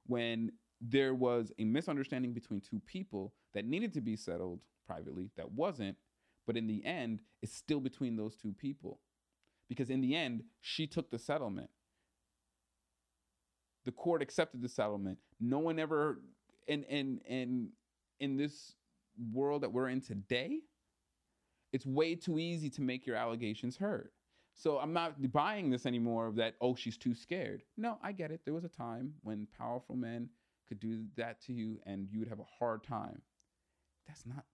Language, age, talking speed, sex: English, 30-49, 170 wpm, male